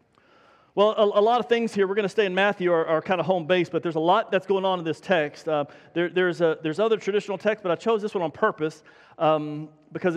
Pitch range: 180-245 Hz